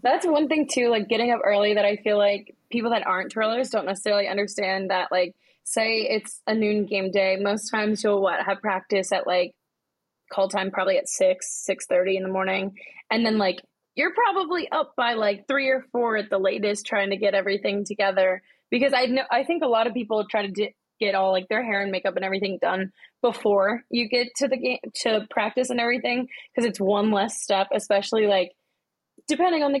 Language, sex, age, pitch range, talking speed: English, female, 20-39, 195-240 Hz, 210 wpm